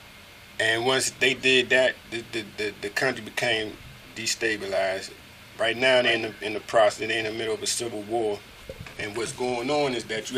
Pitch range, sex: 110-125 Hz, male